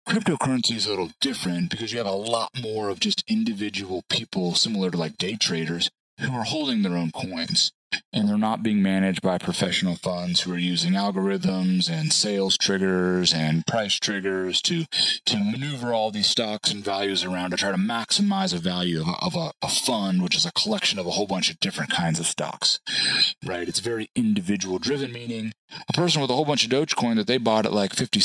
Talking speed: 210 wpm